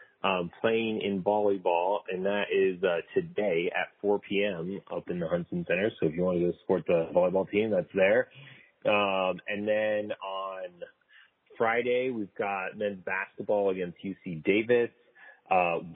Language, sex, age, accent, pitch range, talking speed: English, male, 30-49, American, 95-110 Hz, 160 wpm